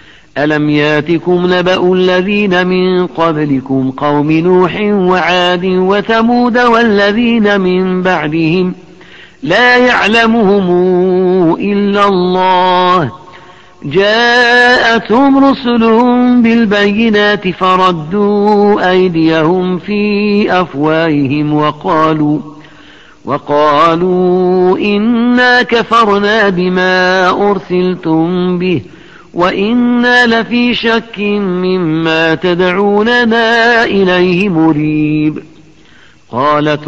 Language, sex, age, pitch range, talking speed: Arabic, male, 50-69, 170-210 Hz, 65 wpm